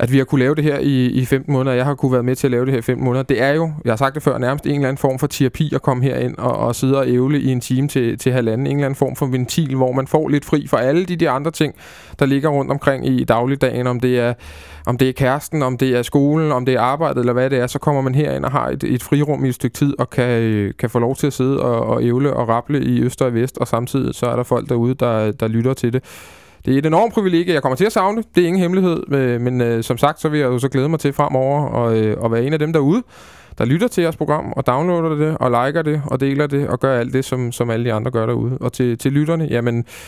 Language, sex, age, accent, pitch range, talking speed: Danish, male, 20-39, native, 120-140 Hz, 305 wpm